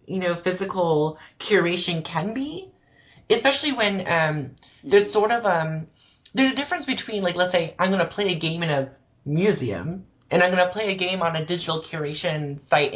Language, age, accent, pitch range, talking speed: English, 30-49, American, 160-210 Hz, 190 wpm